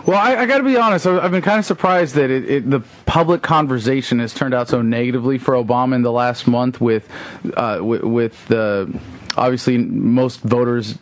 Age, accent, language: 30-49, American, English